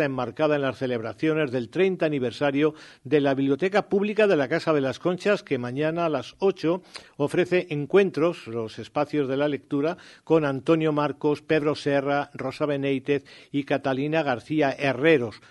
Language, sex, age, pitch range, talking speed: Spanish, male, 50-69, 135-165 Hz, 155 wpm